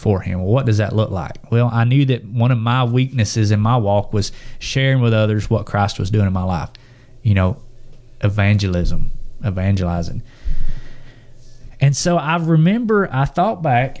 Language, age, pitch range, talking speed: English, 30-49, 110-135 Hz, 175 wpm